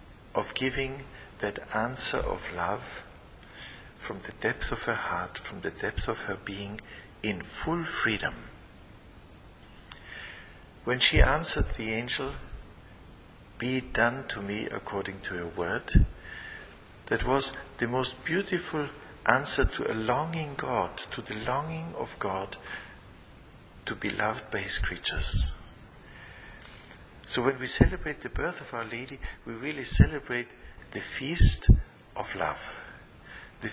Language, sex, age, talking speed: English, male, 60-79, 130 wpm